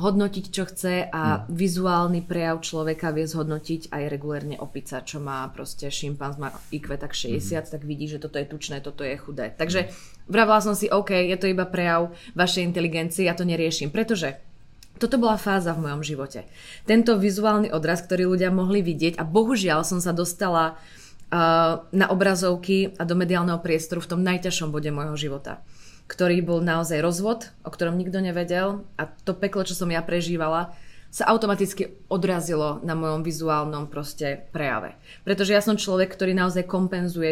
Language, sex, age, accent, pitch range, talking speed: Czech, female, 20-39, native, 155-195 Hz, 165 wpm